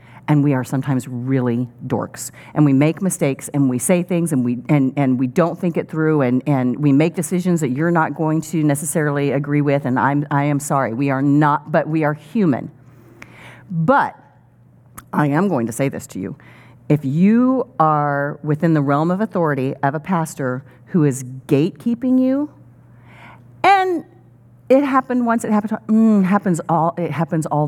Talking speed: 180 wpm